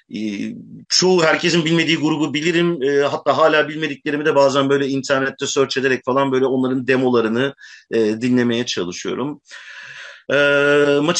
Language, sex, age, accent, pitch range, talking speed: Turkish, male, 50-69, native, 115-140 Hz, 120 wpm